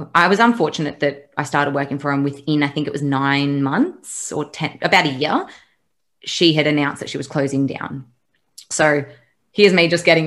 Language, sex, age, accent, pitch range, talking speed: English, female, 20-39, Australian, 145-170 Hz, 200 wpm